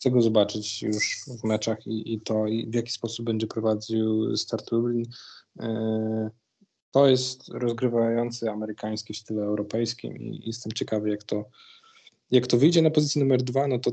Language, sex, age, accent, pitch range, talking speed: Polish, male, 20-39, native, 110-125 Hz, 170 wpm